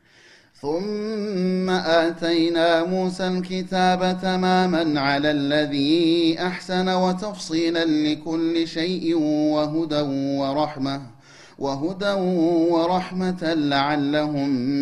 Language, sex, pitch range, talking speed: Amharic, male, 140-170 Hz, 65 wpm